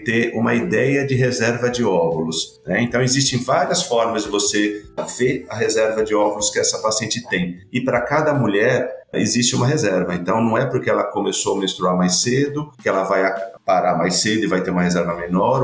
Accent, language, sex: Brazilian, Portuguese, male